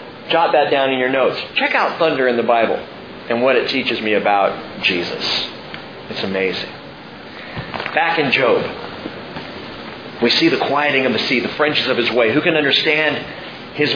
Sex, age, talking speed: male, 40-59, 170 wpm